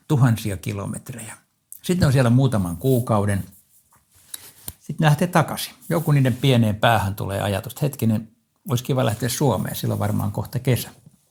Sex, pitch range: male, 100-125 Hz